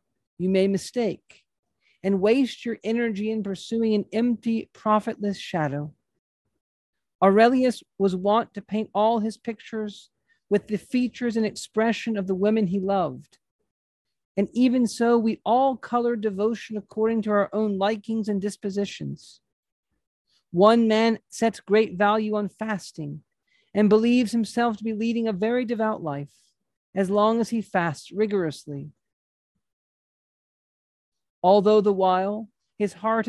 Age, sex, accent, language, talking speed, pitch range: 40-59, male, American, English, 130 wpm, 190-225 Hz